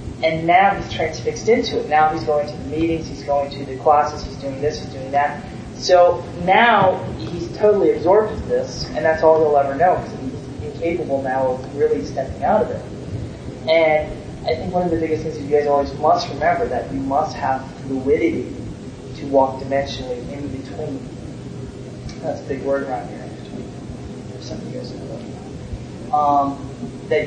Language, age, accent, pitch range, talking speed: English, 20-39, American, 135-160 Hz, 185 wpm